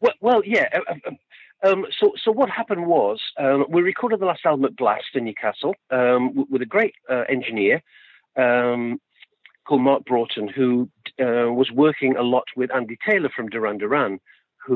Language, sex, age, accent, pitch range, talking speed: English, male, 50-69, British, 115-170 Hz, 165 wpm